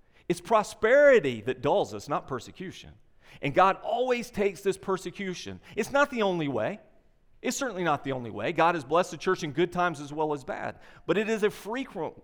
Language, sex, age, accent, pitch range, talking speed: English, male, 40-59, American, 120-175 Hz, 200 wpm